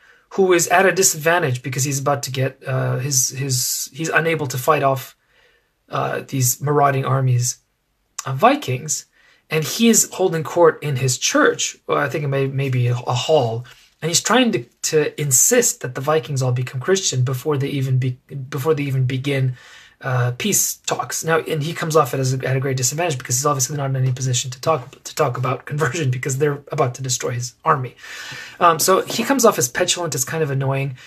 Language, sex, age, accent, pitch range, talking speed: English, male, 30-49, Canadian, 130-160 Hz, 205 wpm